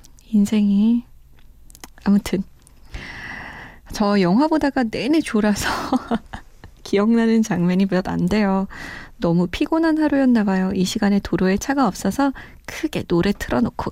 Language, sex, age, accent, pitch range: Korean, female, 20-39, native, 190-255 Hz